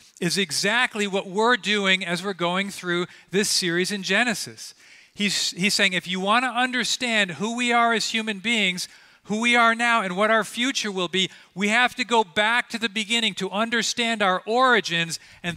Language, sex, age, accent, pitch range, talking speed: English, male, 40-59, American, 185-230 Hz, 190 wpm